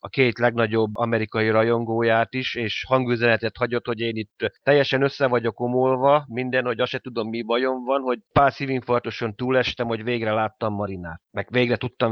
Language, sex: Hungarian, male